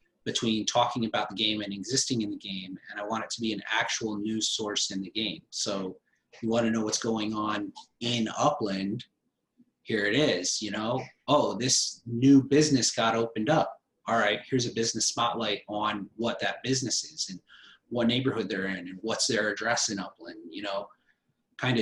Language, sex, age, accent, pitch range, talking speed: English, male, 30-49, American, 100-115 Hz, 195 wpm